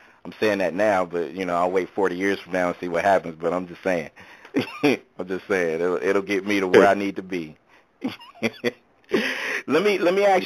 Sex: male